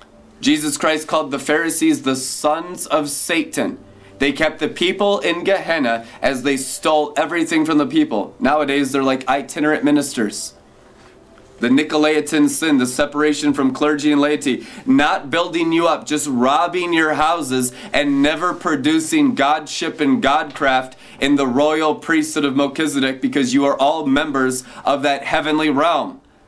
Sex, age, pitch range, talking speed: male, 30-49, 130-160 Hz, 145 wpm